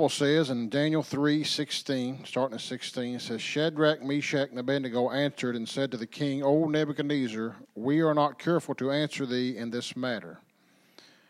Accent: American